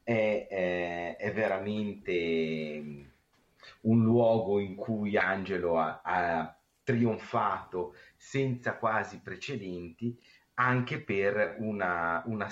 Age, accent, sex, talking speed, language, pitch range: 30-49, native, male, 85 wpm, Italian, 85-115 Hz